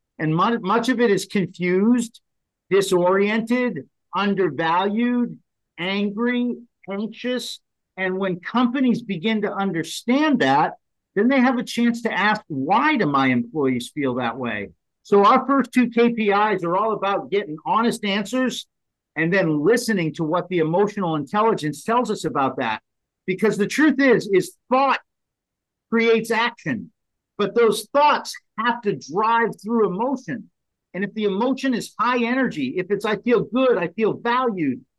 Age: 50-69